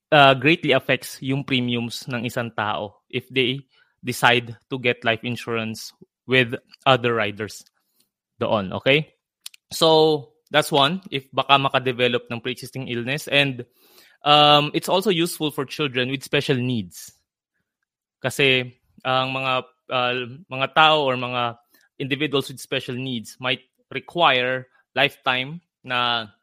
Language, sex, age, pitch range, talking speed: Filipino, male, 20-39, 125-145 Hz, 125 wpm